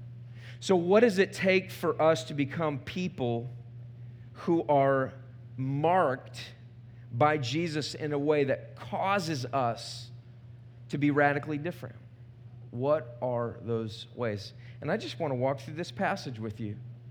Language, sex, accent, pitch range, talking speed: English, male, American, 120-180 Hz, 140 wpm